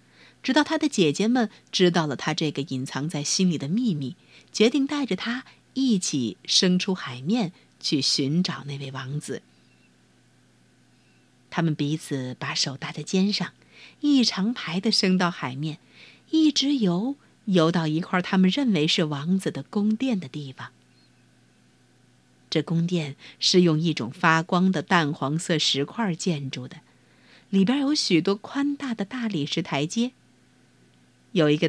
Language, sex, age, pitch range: Chinese, female, 50-69, 150-230 Hz